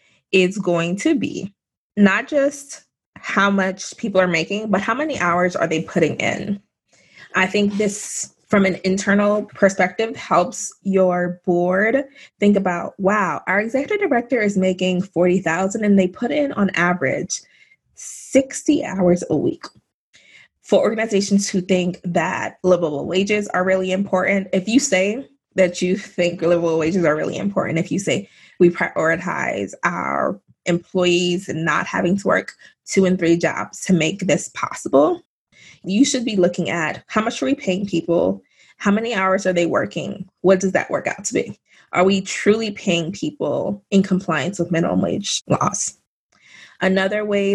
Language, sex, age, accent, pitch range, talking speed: English, female, 20-39, American, 180-210 Hz, 160 wpm